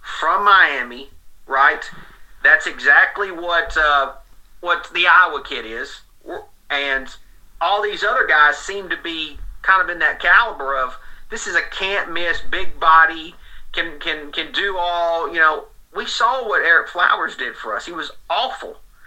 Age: 40-59